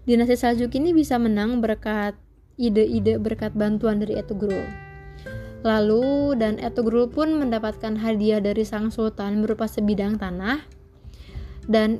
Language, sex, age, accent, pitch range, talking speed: Indonesian, female, 20-39, native, 205-240 Hz, 120 wpm